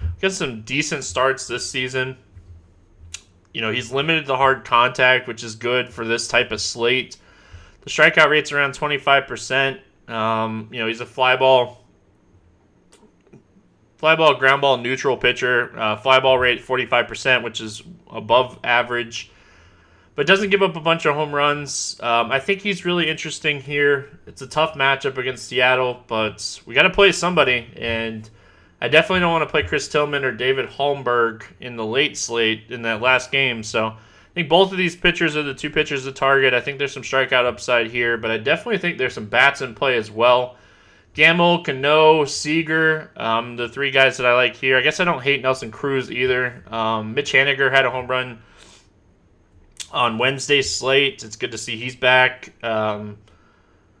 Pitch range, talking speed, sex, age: 110-140 Hz, 180 wpm, male, 20-39